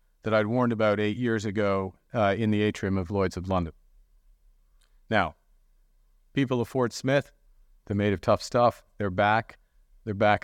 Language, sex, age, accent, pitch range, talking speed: English, male, 50-69, American, 100-120 Hz, 165 wpm